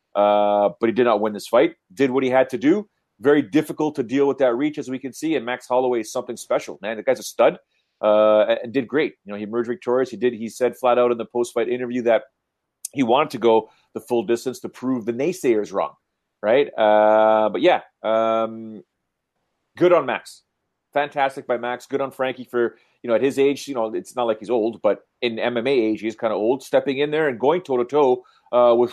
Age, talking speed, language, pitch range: 30-49, 230 wpm, English, 115-140 Hz